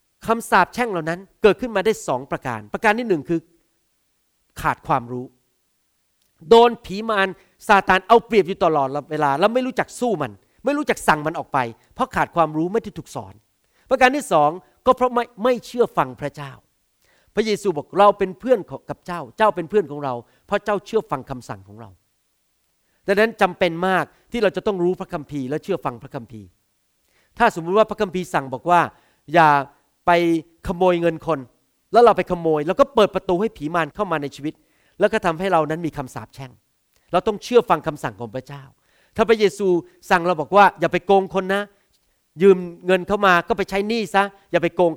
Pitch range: 145-210 Hz